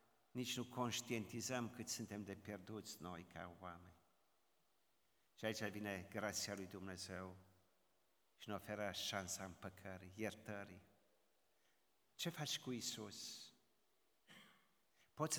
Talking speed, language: 105 wpm, Romanian